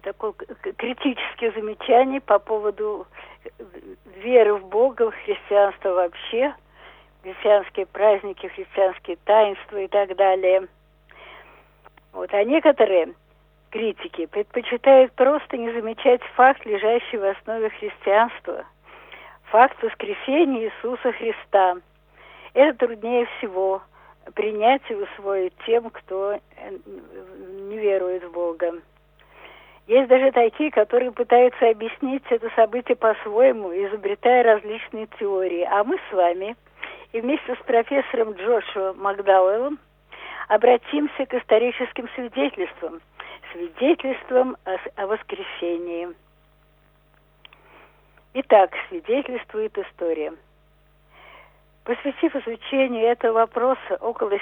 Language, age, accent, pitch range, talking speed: Russian, 50-69, native, 195-255 Hz, 90 wpm